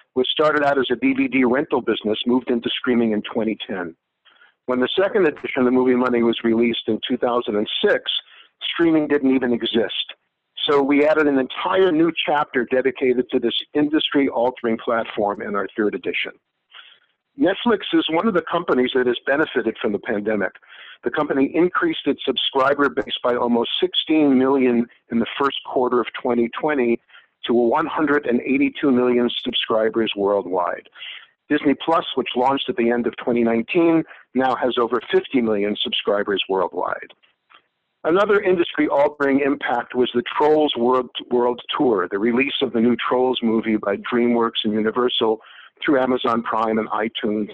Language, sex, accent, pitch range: English, male, American, 120-145 Hz